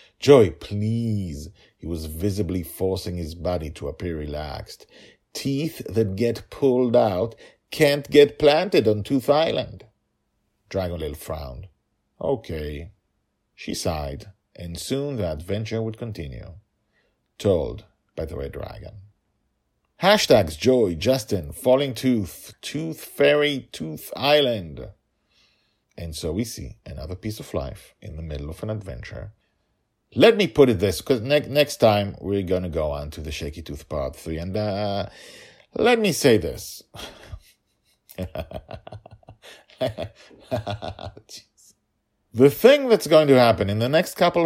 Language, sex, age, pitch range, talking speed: English, male, 50-69, 85-130 Hz, 130 wpm